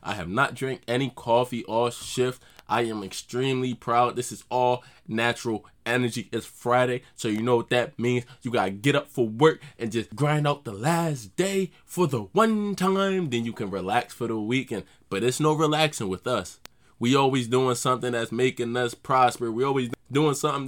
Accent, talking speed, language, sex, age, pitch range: American, 195 wpm, English, male, 20-39, 120-150 Hz